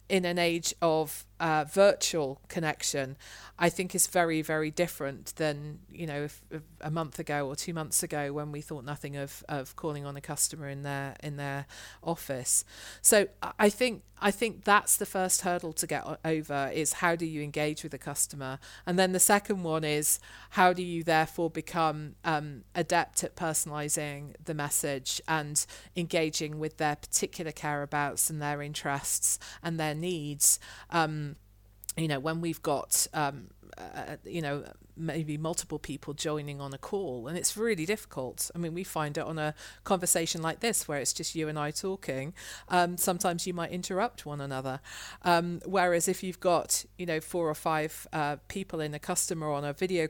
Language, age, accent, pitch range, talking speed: English, 40-59, British, 145-175 Hz, 185 wpm